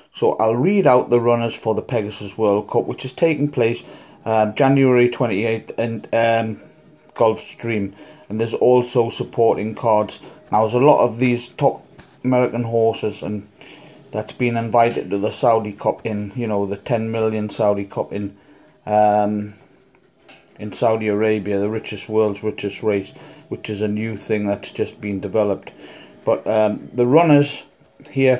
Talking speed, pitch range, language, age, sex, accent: 160 wpm, 105-130 Hz, English, 30-49, male, British